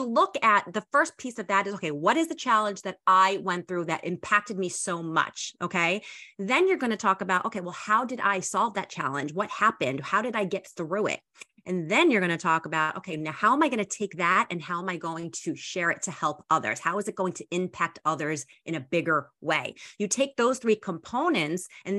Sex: female